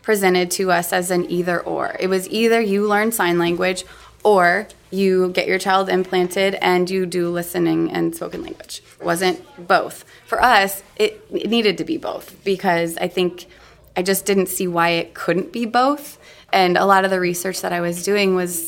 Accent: American